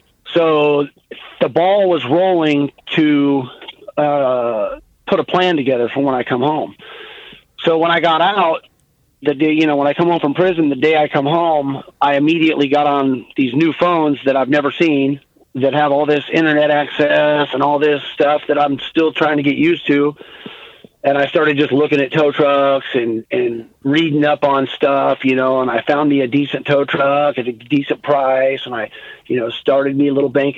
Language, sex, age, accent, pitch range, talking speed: English, male, 40-59, American, 135-155 Hz, 200 wpm